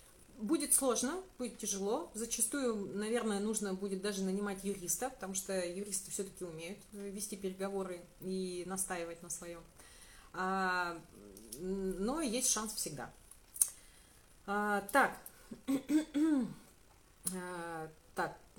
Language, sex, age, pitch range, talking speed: Russian, female, 30-49, 175-230 Hz, 90 wpm